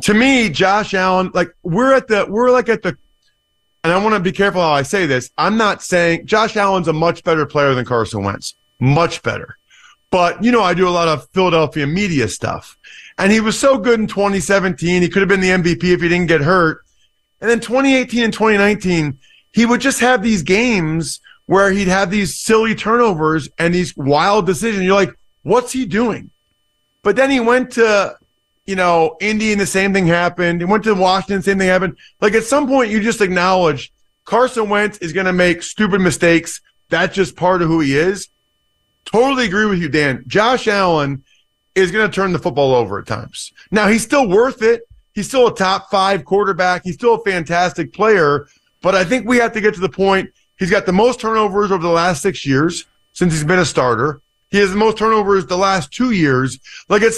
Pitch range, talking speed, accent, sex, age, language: 170-215 Hz, 210 wpm, American, male, 30-49, English